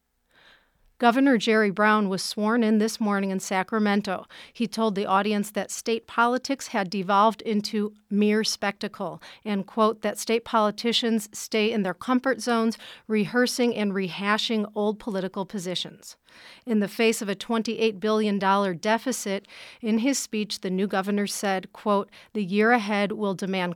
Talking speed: 150 wpm